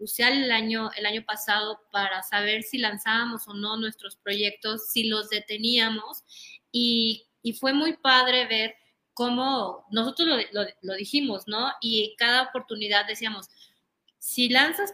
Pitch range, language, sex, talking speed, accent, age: 205-245 Hz, Spanish, female, 140 wpm, Mexican, 30-49